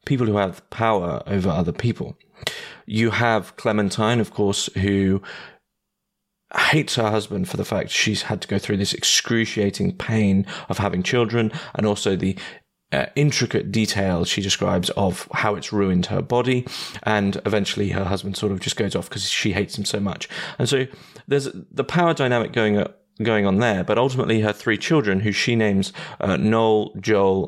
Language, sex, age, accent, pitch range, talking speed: English, male, 30-49, British, 100-115 Hz, 175 wpm